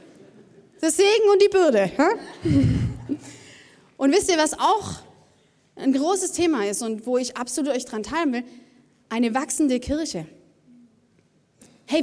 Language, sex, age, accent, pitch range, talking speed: German, female, 20-39, German, 245-335 Hz, 130 wpm